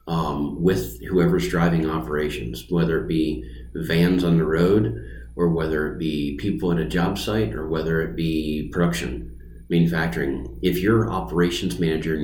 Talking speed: 155 wpm